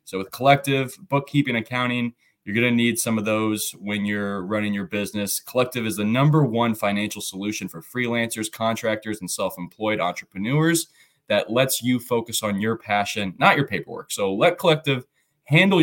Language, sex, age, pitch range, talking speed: English, male, 20-39, 105-130 Hz, 165 wpm